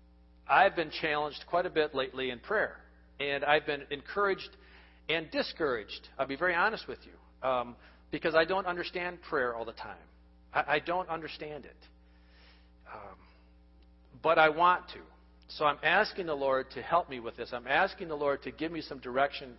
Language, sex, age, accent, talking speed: English, male, 50-69, American, 180 wpm